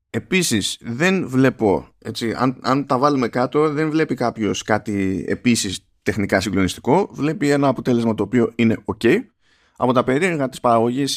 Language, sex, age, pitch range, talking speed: Greek, male, 30-49, 100-135 Hz, 150 wpm